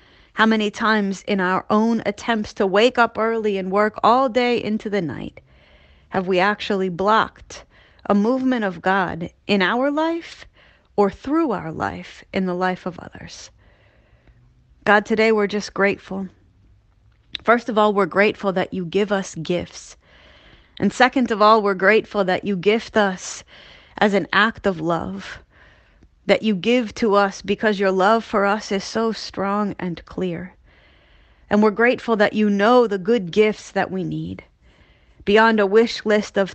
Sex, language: female, English